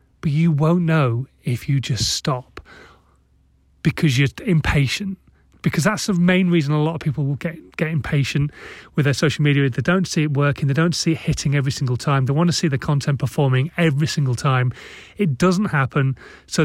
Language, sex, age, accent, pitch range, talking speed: English, male, 30-49, British, 140-180 Hz, 200 wpm